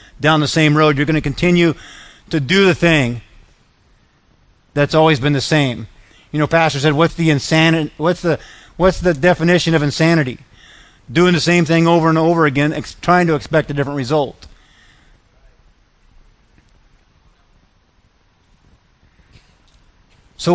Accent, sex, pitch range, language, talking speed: American, male, 130-170 Hz, English, 135 wpm